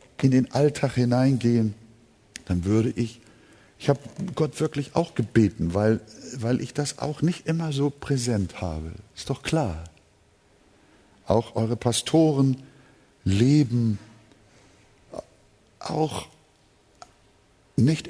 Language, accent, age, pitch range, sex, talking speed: German, German, 60-79, 110-145 Hz, male, 105 wpm